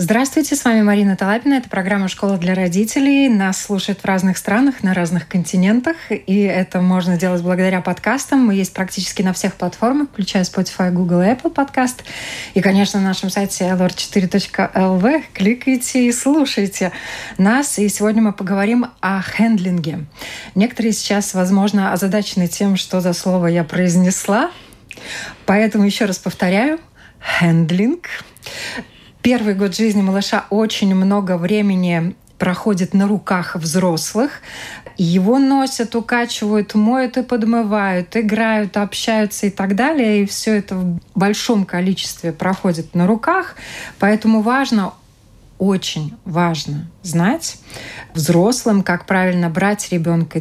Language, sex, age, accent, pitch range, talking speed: Russian, female, 20-39, native, 180-220 Hz, 125 wpm